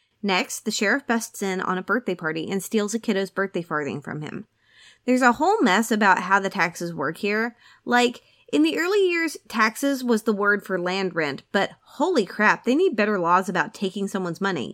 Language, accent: English, American